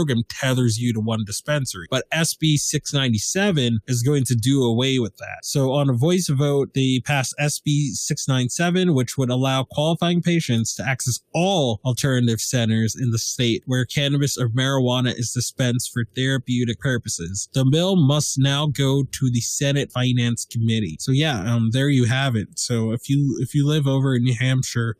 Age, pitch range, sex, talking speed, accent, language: 20-39, 115-140 Hz, male, 180 wpm, American, English